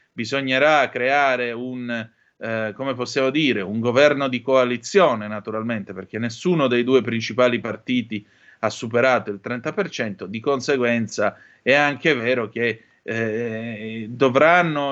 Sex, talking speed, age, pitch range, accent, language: male, 120 wpm, 30-49, 110-135 Hz, native, Italian